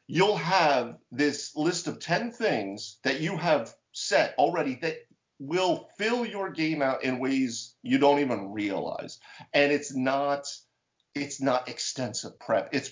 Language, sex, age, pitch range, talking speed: English, male, 50-69, 120-170 Hz, 150 wpm